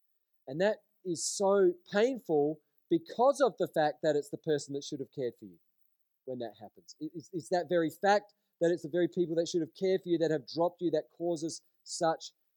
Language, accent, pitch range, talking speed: English, Australian, 150-195 Hz, 215 wpm